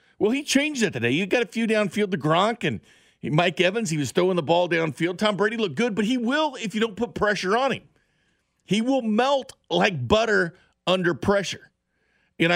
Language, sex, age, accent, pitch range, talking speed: English, male, 50-69, American, 135-190 Hz, 205 wpm